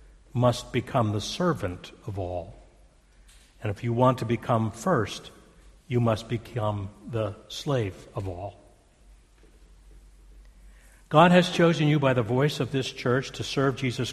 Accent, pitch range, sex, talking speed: American, 110-145 Hz, male, 140 wpm